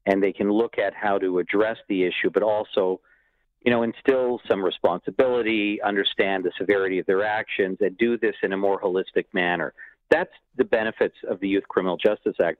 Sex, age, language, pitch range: male, 50-69, English, 100-140 Hz